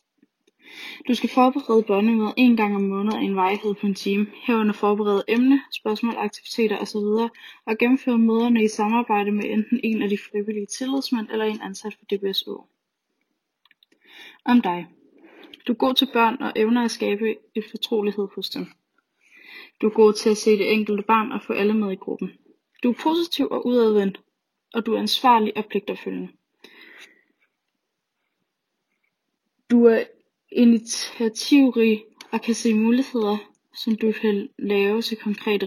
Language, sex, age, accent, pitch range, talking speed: Danish, female, 20-39, native, 210-250 Hz, 155 wpm